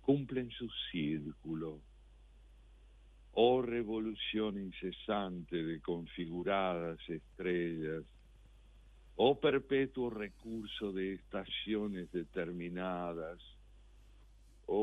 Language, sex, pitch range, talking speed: Spanish, male, 85-110 Hz, 75 wpm